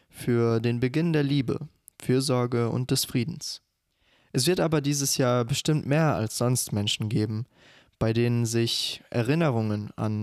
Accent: German